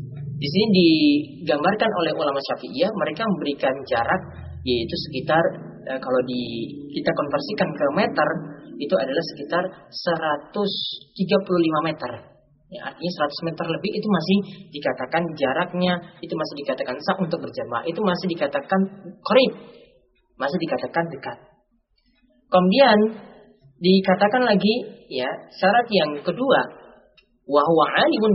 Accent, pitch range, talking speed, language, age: native, 145-205 Hz, 110 wpm, Indonesian, 30-49